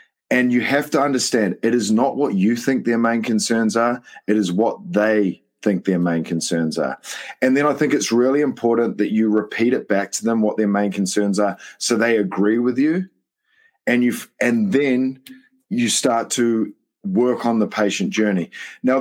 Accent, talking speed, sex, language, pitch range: Australian, 195 wpm, male, English, 100-125 Hz